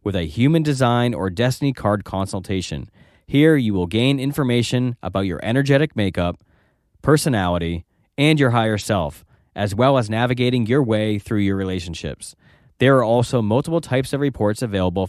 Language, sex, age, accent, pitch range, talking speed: English, male, 20-39, American, 95-135 Hz, 155 wpm